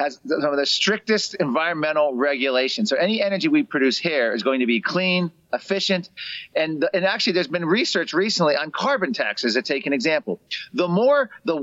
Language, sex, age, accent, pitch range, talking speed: English, male, 40-59, American, 170-215 Hz, 190 wpm